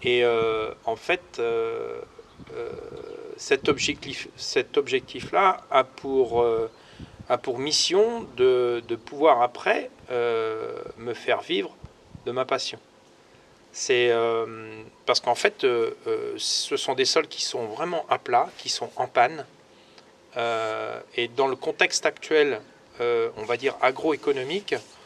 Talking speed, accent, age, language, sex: 130 wpm, French, 40-59, French, male